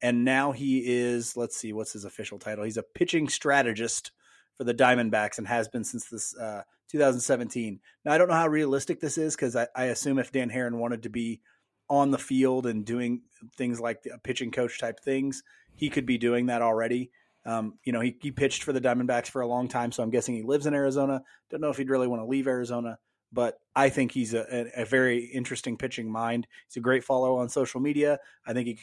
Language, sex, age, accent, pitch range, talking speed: English, male, 30-49, American, 115-135 Hz, 230 wpm